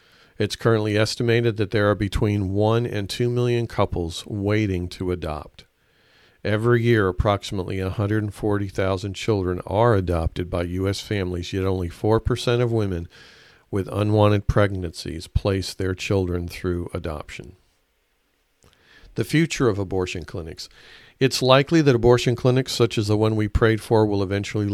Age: 50-69